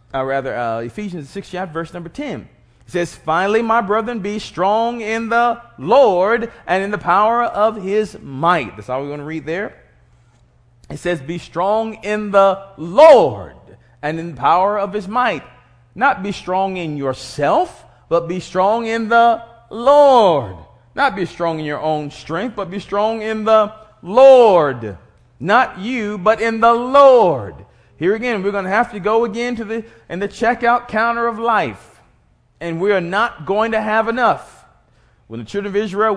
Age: 30-49